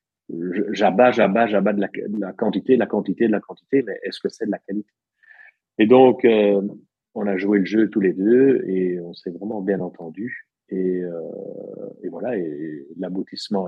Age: 40-59